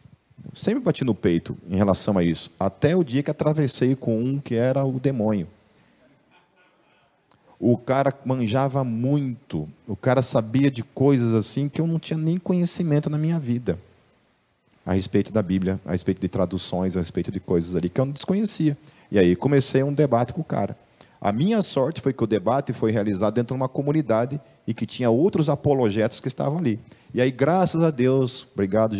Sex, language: male, Portuguese